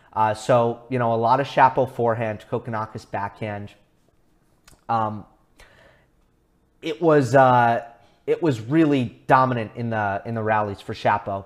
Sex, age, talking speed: male, 30-49, 135 wpm